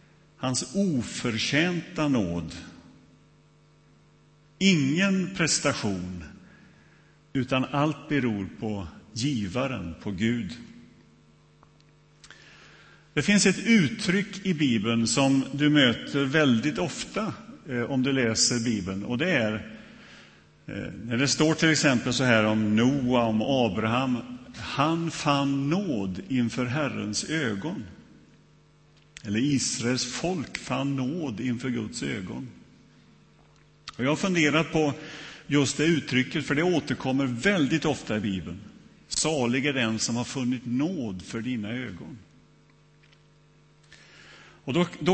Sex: male